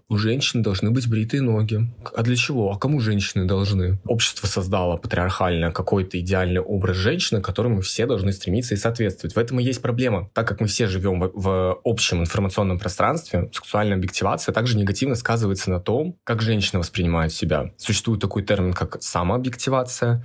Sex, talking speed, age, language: male, 170 wpm, 20-39, Russian